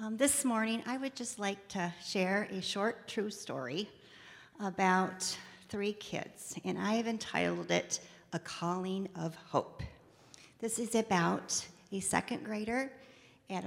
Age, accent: 40-59, American